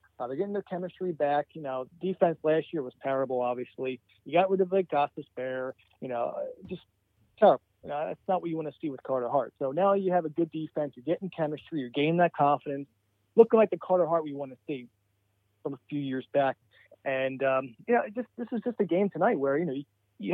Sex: male